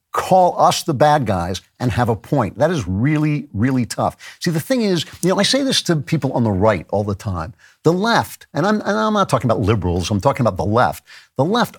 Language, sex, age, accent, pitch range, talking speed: English, male, 50-69, American, 110-160 Hz, 245 wpm